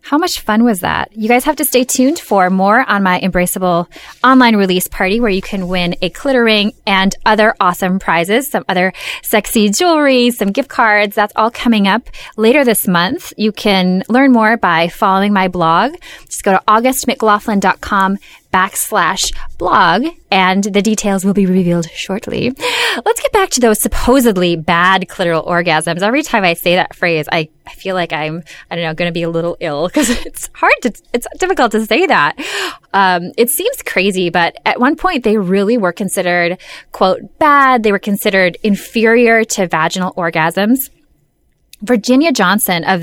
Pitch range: 180-245 Hz